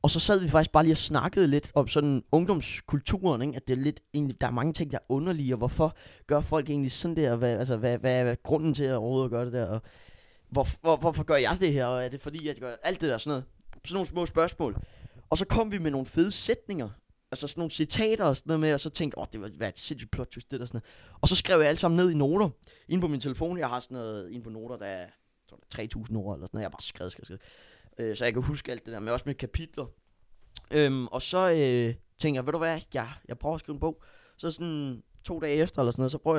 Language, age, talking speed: Danish, 20-39, 285 wpm